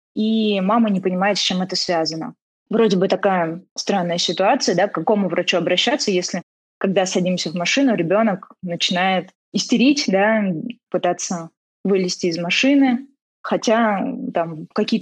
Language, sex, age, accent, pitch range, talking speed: Russian, female, 20-39, native, 180-235 Hz, 130 wpm